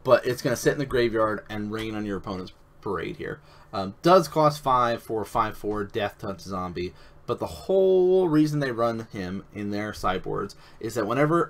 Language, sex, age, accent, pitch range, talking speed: English, male, 30-49, American, 100-140 Hz, 205 wpm